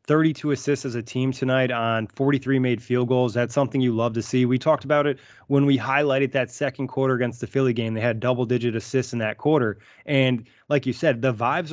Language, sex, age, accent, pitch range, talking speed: English, male, 20-39, American, 120-140 Hz, 225 wpm